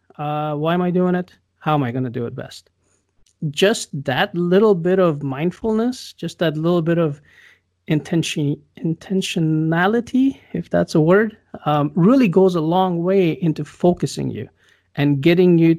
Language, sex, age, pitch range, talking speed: English, male, 30-49, 140-170 Hz, 160 wpm